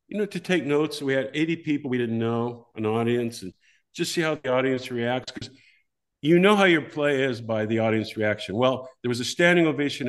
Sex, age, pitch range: male, 50-69, 115-145 Hz